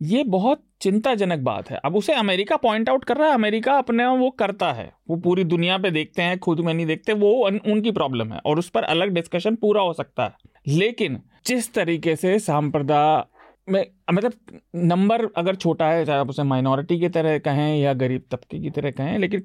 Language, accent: Hindi, native